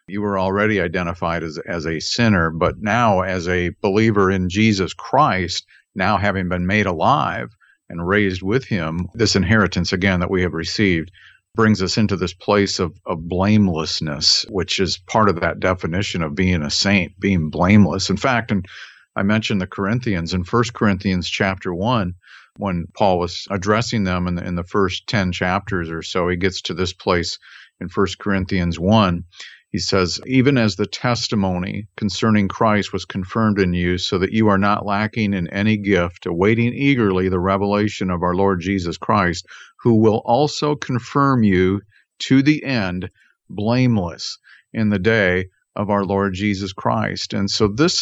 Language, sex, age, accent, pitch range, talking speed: English, male, 50-69, American, 90-110 Hz, 170 wpm